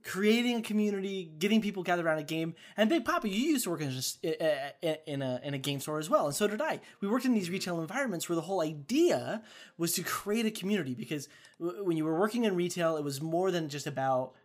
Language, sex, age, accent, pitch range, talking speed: English, male, 20-39, American, 145-215 Hz, 245 wpm